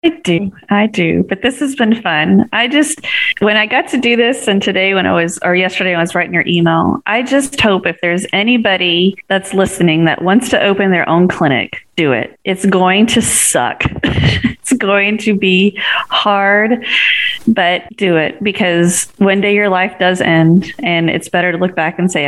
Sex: female